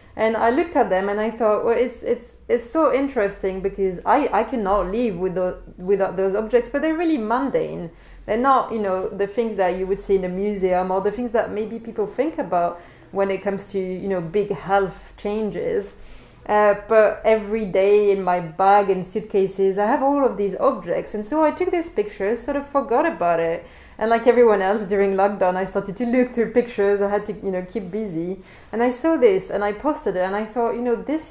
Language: English